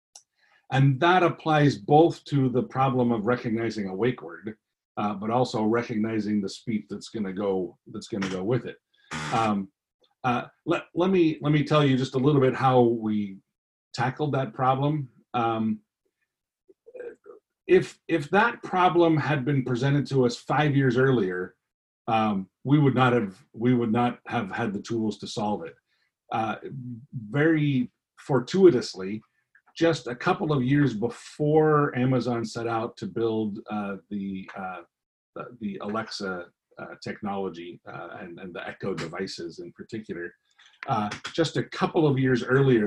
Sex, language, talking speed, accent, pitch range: male, English, 155 wpm, American, 110-140 Hz